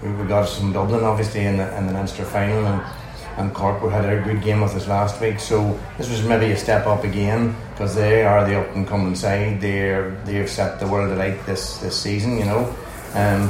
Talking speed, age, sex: 220 wpm, 30-49, male